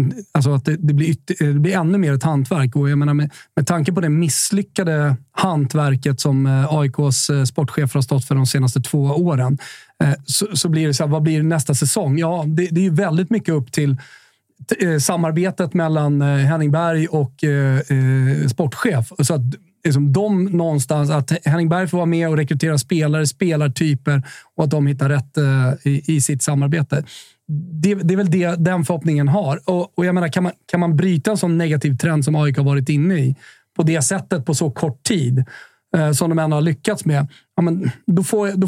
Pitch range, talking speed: 140-170 Hz, 200 wpm